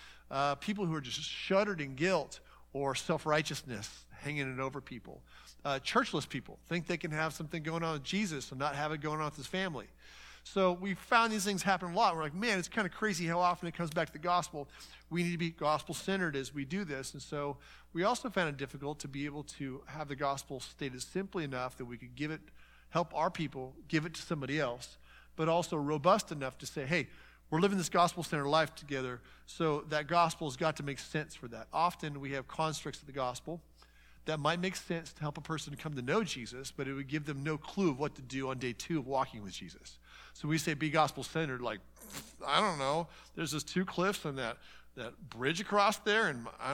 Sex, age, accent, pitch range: male, 50-69, American, 140-175 Hz